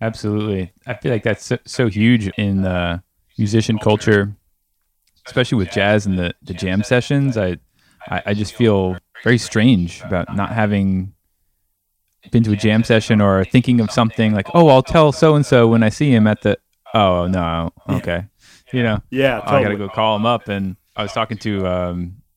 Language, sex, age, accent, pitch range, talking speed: English, male, 20-39, American, 95-115 Hz, 185 wpm